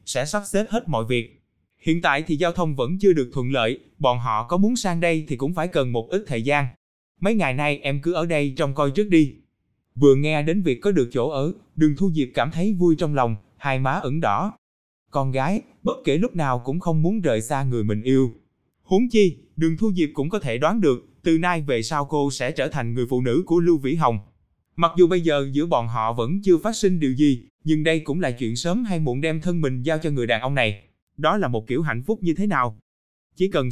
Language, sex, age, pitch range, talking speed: Vietnamese, male, 20-39, 125-175 Hz, 250 wpm